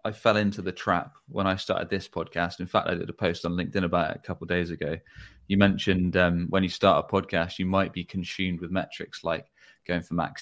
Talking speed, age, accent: 250 wpm, 20-39, British